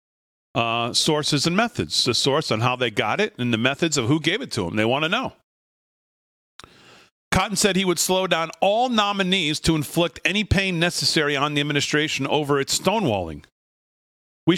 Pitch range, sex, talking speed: 125-165 Hz, male, 180 wpm